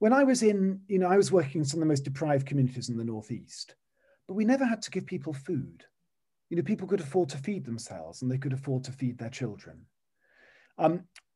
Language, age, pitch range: English, 40-59, 125-160 Hz